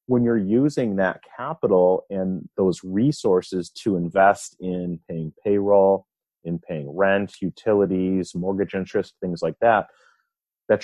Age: 30-49